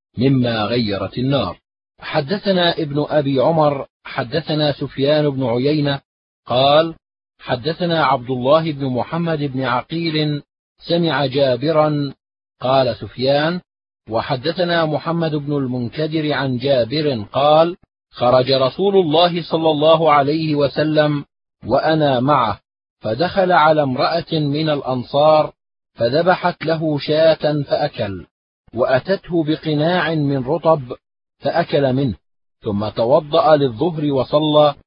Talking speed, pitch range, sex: 100 wpm, 130-160 Hz, male